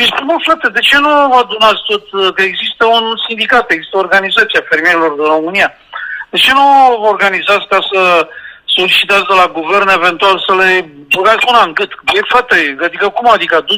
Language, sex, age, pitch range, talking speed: Romanian, male, 50-69, 185-250 Hz, 155 wpm